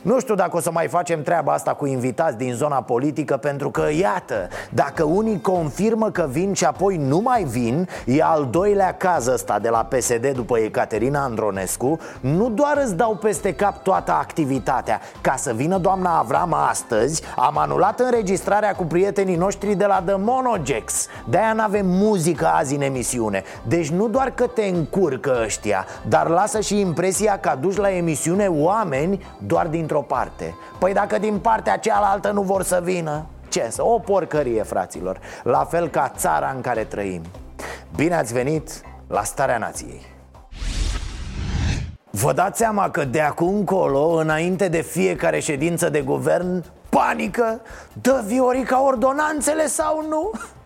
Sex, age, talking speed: male, 30-49, 160 wpm